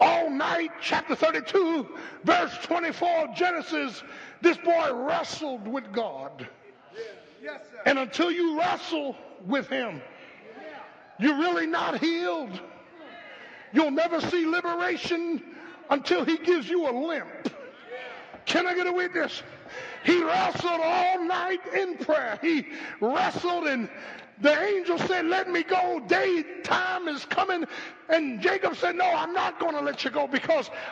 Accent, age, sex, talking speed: American, 50-69, male, 130 wpm